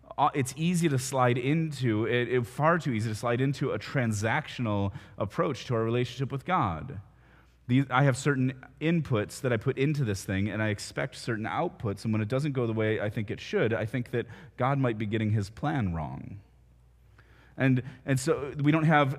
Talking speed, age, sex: 200 wpm, 30-49, male